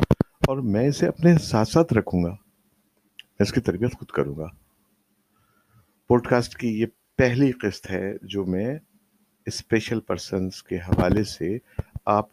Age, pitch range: 50-69, 100-125 Hz